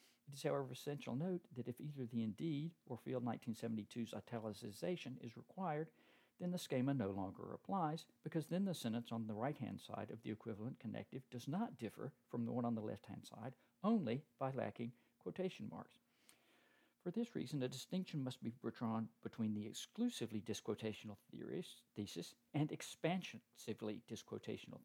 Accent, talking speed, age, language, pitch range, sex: American, 155 wpm, 50-69, English, 115-155 Hz, male